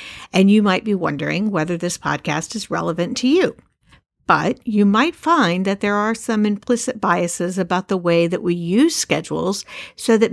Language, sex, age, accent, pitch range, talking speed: English, female, 50-69, American, 165-210 Hz, 180 wpm